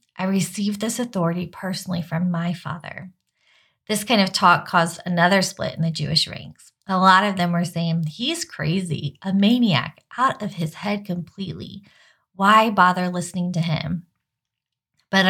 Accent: American